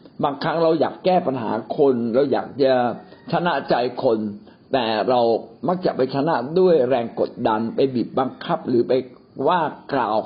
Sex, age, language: male, 60-79, Thai